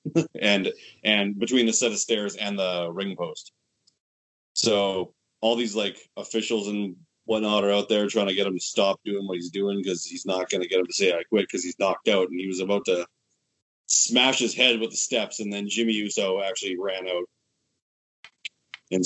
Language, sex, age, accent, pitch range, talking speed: English, male, 30-49, American, 95-115 Hz, 205 wpm